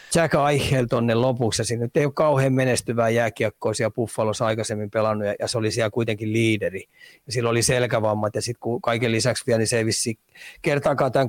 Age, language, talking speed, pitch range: 30-49, Finnish, 175 wpm, 110-130 Hz